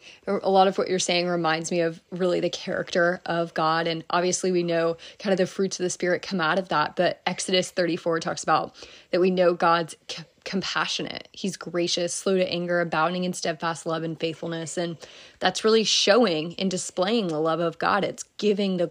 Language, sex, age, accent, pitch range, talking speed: English, female, 20-39, American, 170-200 Hz, 200 wpm